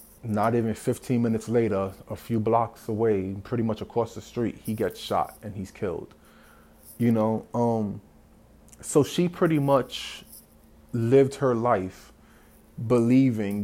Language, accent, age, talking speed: English, American, 20-39, 135 wpm